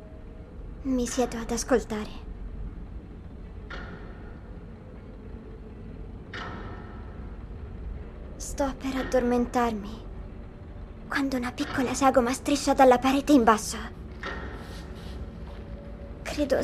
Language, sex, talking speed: Italian, male, 60 wpm